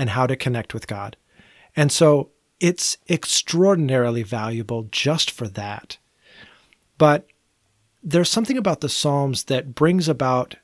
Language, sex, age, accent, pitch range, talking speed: English, male, 30-49, American, 120-160 Hz, 130 wpm